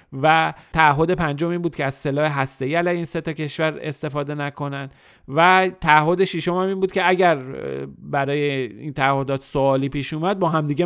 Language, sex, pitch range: Persian, male, 135-170 Hz